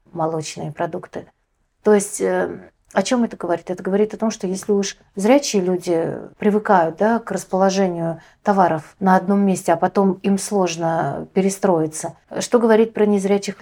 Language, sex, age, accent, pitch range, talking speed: Russian, female, 30-49, native, 175-215 Hz, 150 wpm